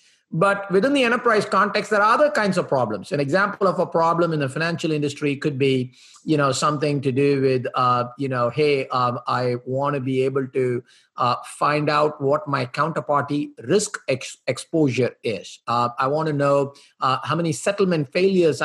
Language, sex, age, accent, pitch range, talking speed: English, male, 50-69, Indian, 135-190 Hz, 190 wpm